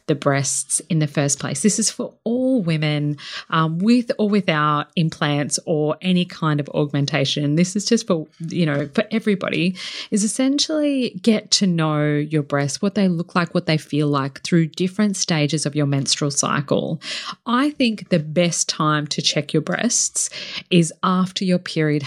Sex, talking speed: female, 175 wpm